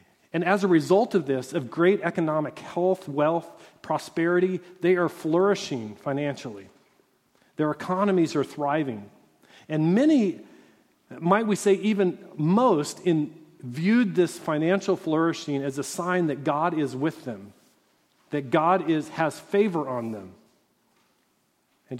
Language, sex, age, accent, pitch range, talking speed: English, male, 40-59, American, 140-185 Hz, 125 wpm